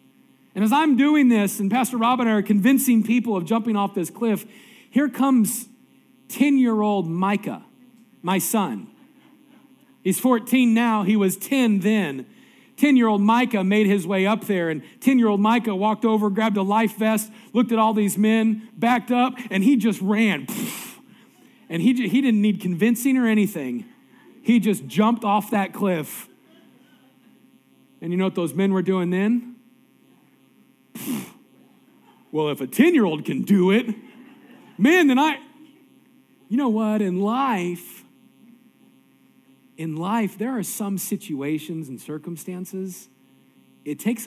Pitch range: 190-250 Hz